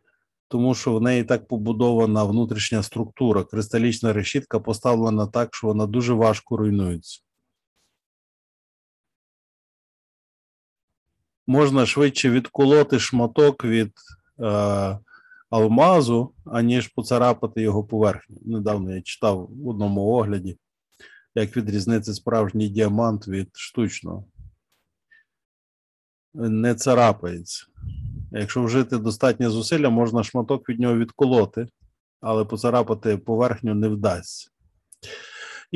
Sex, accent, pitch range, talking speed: male, native, 105-125 Hz, 95 wpm